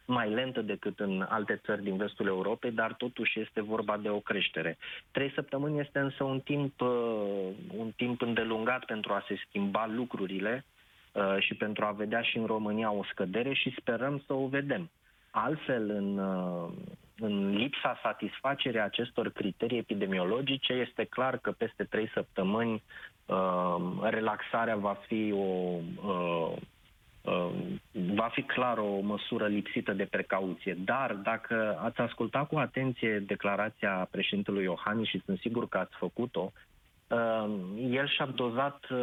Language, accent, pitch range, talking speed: Romanian, native, 100-125 Hz, 135 wpm